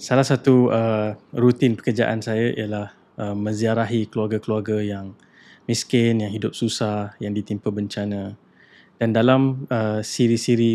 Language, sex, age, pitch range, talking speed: Malay, male, 20-39, 110-125 Hz, 125 wpm